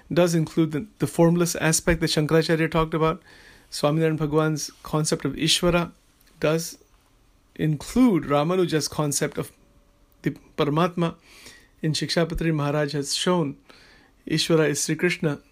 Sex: male